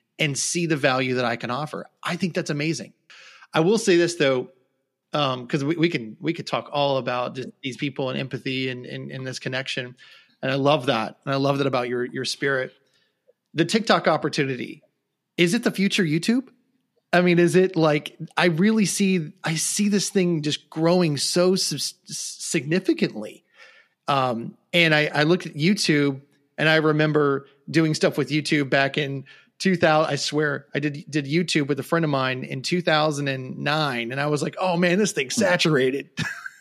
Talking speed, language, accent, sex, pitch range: 185 wpm, English, American, male, 140-180 Hz